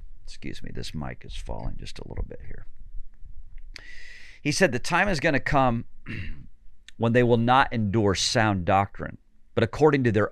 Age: 50-69